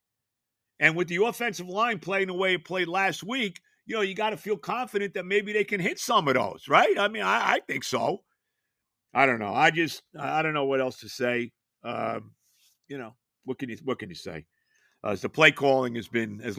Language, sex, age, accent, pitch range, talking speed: English, male, 50-69, American, 135-185 Hz, 240 wpm